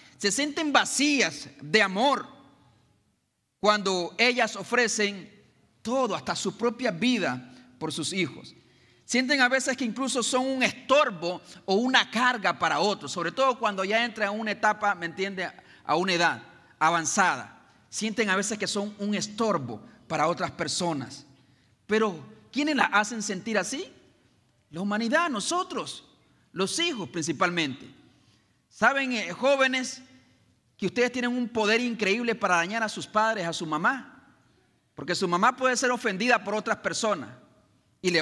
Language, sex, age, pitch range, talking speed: Spanish, male, 40-59, 135-225 Hz, 145 wpm